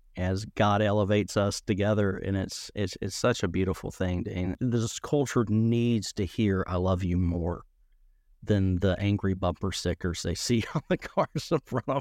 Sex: male